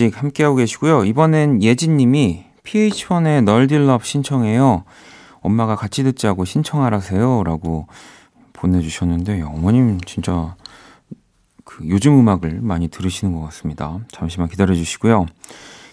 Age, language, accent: 40-59, Korean, native